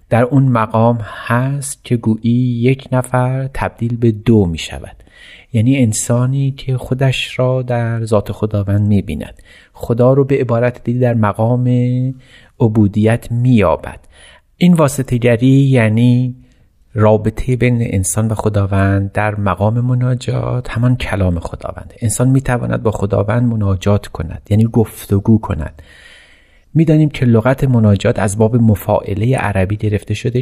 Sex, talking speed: male, 130 wpm